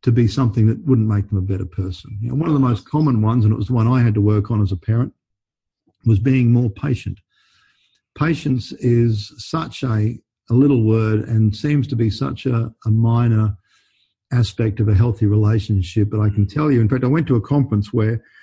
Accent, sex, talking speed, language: Australian, male, 215 wpm, English